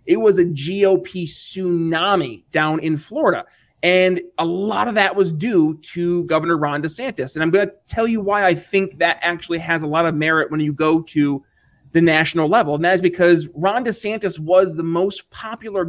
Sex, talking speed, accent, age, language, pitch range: male, 195 wpm, American, 20-39, English, 160-195 Hz